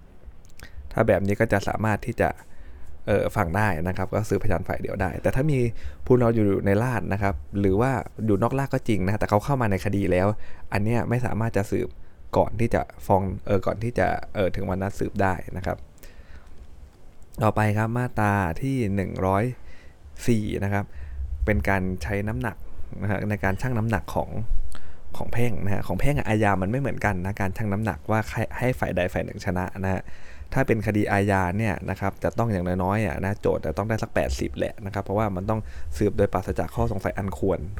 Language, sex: Thai, male